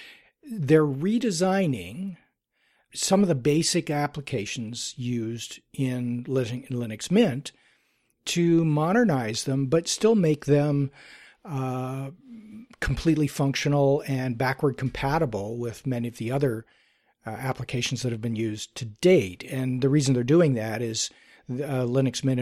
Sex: male